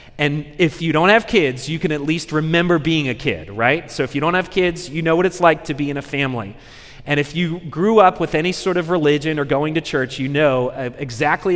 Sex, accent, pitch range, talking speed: male, American, 135-180 Hz, 250 wpm